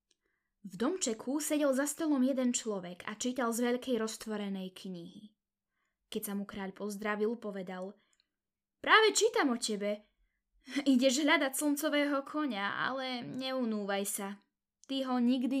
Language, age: Slovak, 10-29